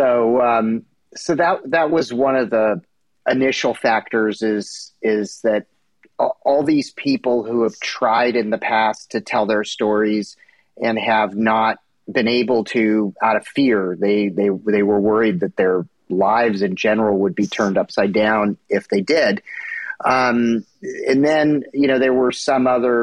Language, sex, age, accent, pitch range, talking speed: English, male, 30-49, American, 105-120 Hz, 165 wpm